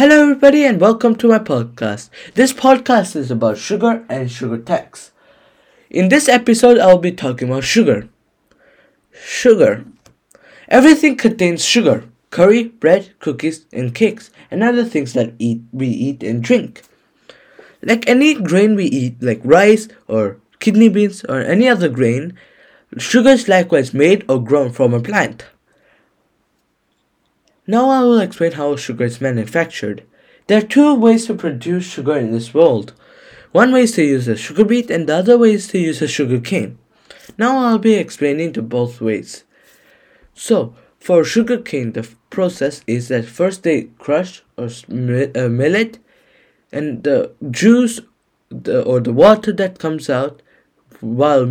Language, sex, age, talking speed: English, male, 10-29, 155 wpm